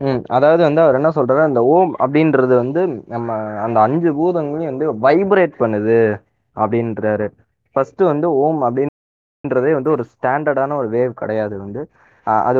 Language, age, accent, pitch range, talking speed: Tamil, 20-39, native, 115-155 Hz, 145 wpm